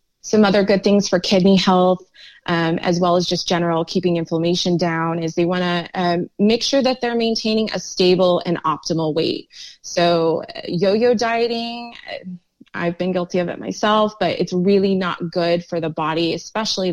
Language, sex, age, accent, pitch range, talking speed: English, female, 20-39, American, 165-195 Hz, 175 wpm